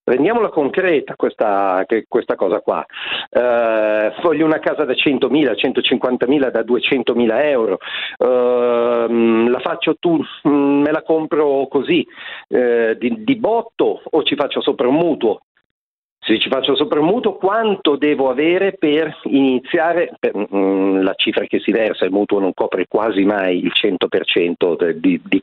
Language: Italian